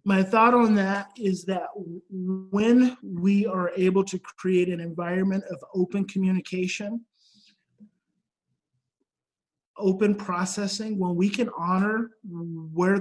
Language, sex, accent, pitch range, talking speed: English, male, American, 180-210 Hz, 110 wpm